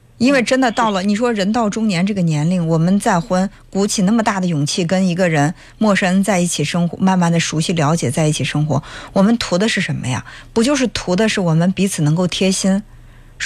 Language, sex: Chinese, female